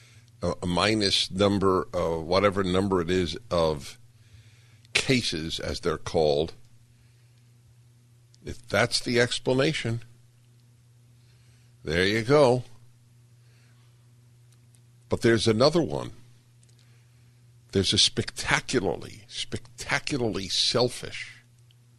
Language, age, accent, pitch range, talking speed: English, 60-79, American, 100-120 Hz, 80 wpm